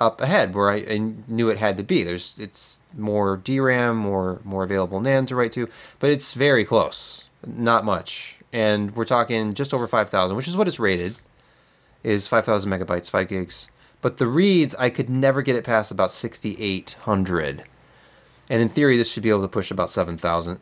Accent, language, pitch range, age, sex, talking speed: American, English, 95-125 Hz, 30-49, male, 190 wpm